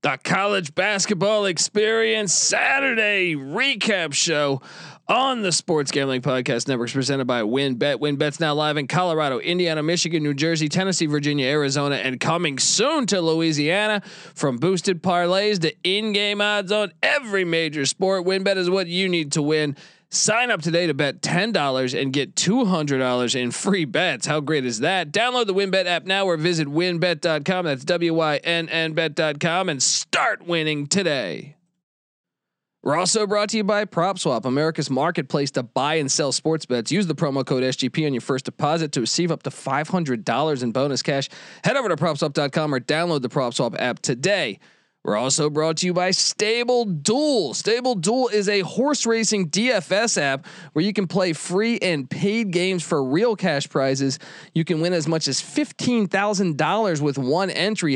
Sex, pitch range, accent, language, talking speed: male, 145-190 Hz, American, English, 170 wpm